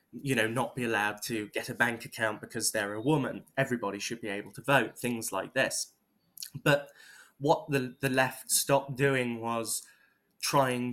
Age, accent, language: 10-29, British, English